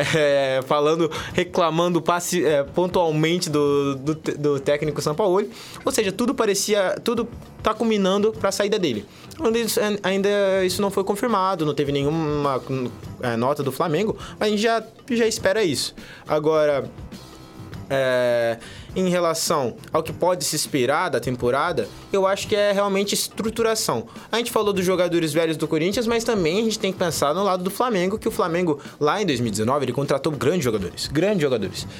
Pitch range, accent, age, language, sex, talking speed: 140-195 Hz, Brazilian, 20-39, Portuguese, male, 165 wpm